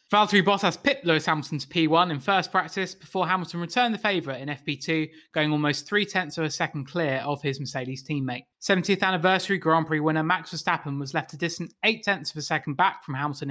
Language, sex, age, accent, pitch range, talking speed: English, male, 20-39, British, 150-190 Hz, 205 wpm